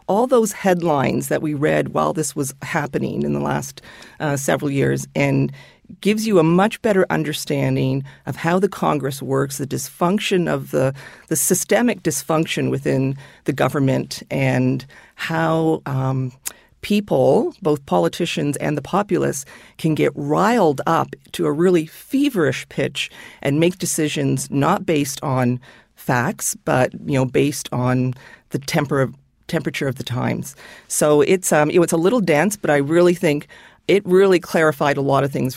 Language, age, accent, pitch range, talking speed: English, 40-59, American, 135-180 Hz, 160 wpm